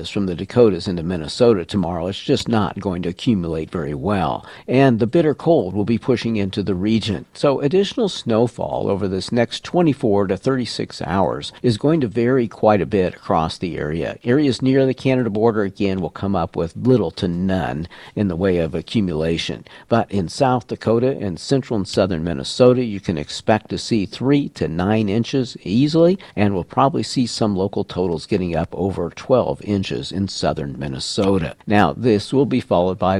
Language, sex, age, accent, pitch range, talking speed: English, male, 50-69, American, 90-115 Hz, 185 wpm